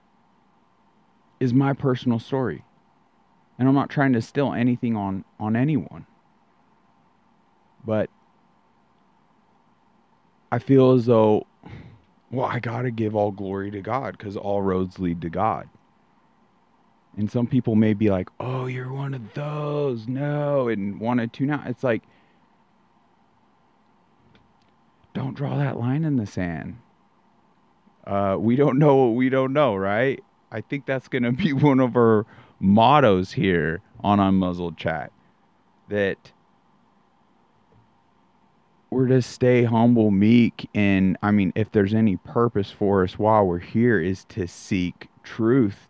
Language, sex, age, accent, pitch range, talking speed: English, male, 30-49, American, 100-130 Hz, 135 wpm